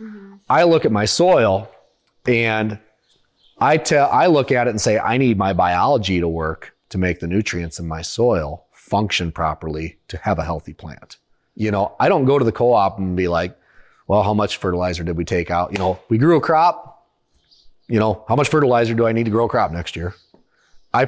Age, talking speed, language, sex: 30-49, 210 wpm, English, male